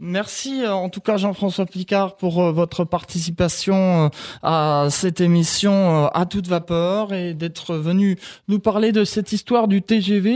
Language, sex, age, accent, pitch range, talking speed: French, male, 20-39, French, 165-220 Hz, 145 wpm